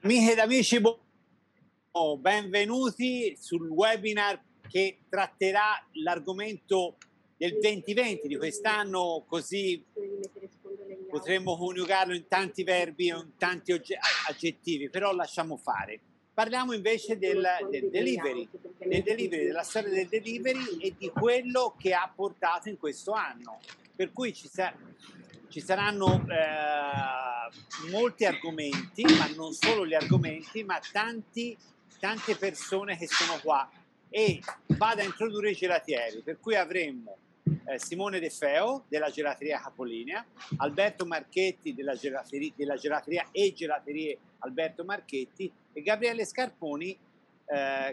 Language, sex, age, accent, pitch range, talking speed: Italian, male, 50-69, native, 160-220 Hz, 120 wpm